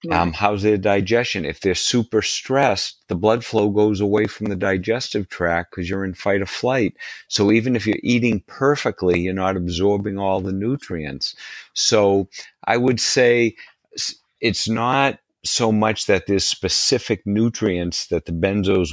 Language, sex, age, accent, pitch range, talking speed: English, male, 50-69, American, 90-105 Hz, 160 wpm